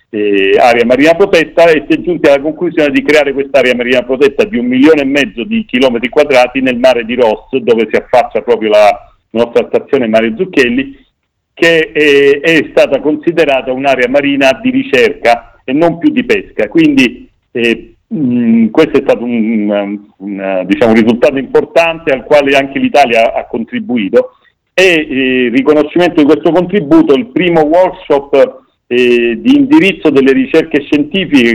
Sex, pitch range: male, 130-170 Hz